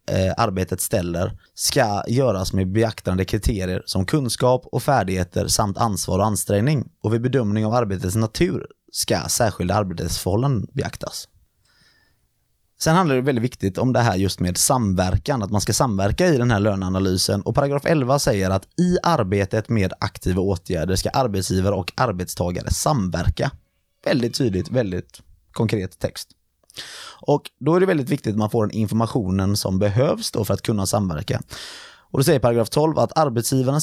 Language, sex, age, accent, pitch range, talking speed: Swedish, male, 20-39, native, 95-125 Hz, 160 wpm